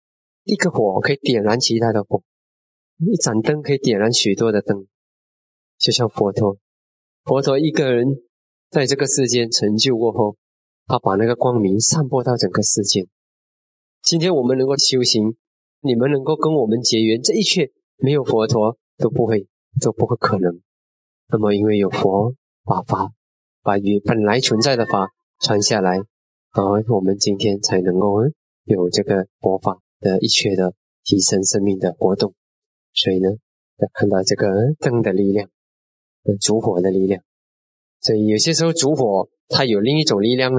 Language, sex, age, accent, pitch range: Chinese, male, 20-39, native, 100-145 Hz